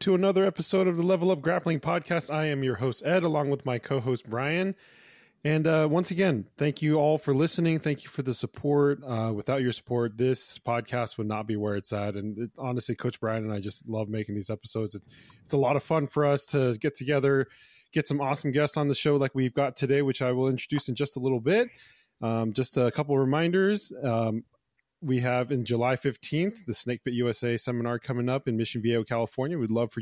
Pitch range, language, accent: 115-145 Hz, English, American